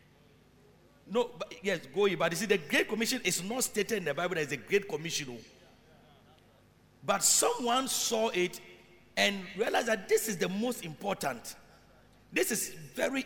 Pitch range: 160-225 Hz